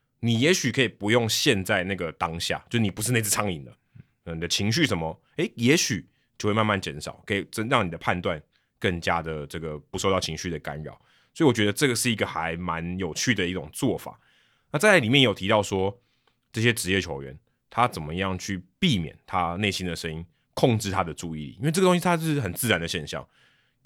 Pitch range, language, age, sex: 85-120 Hz, Chinese, 20-39, male